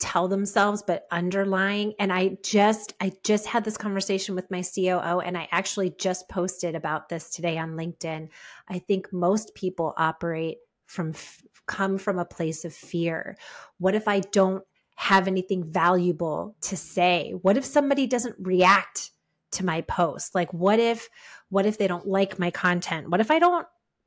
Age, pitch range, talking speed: 30-49, 175-210 Hz, 170 wpm